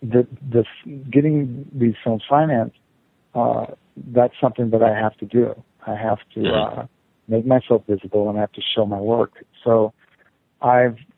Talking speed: 160 wpm